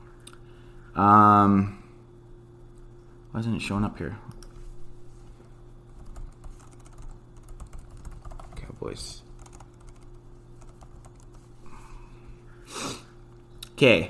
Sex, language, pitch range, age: male, English, 100-120 Hz, 30-49